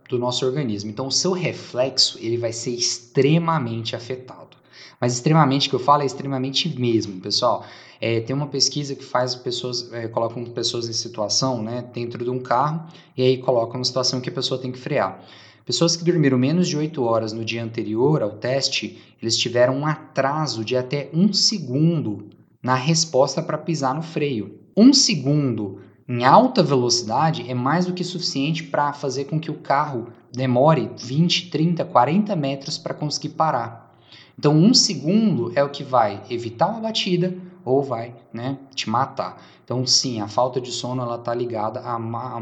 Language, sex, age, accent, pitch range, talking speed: Portuguese, male, 20-39, Brazilian, 115-150 Hz, 175 wpm